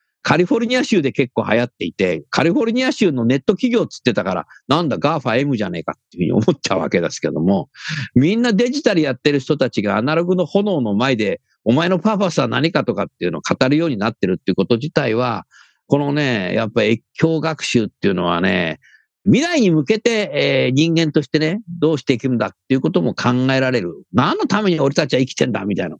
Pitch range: 130-215 Hz